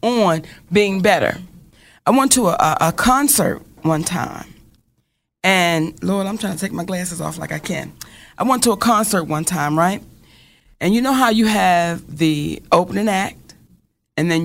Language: English